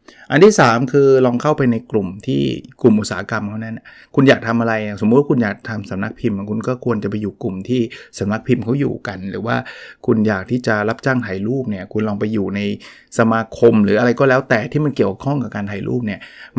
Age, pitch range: 20-39, 110-135 Hz